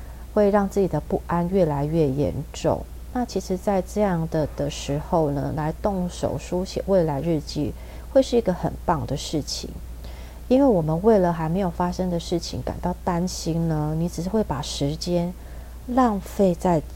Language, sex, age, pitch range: Chinese, female, 30-49, 135-180 Hz